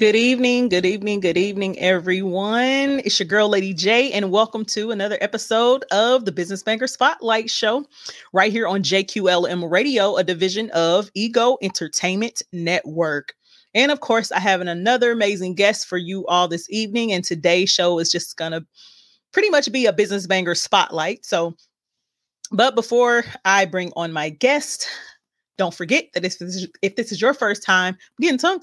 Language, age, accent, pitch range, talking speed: English, 30-49, American, 180-225 Hz, 165 wpm